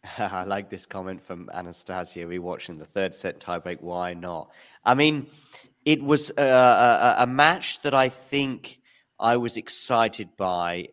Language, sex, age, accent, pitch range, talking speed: English, male, 40-59, British, 100-130 Hz, 155 wpm